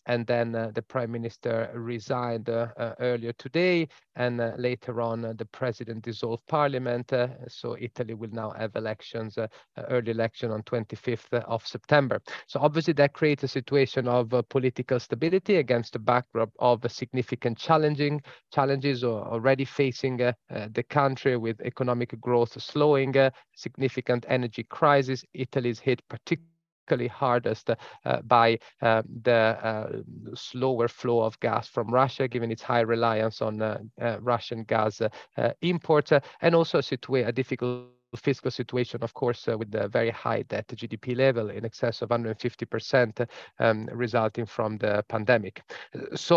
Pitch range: 115-135 Hz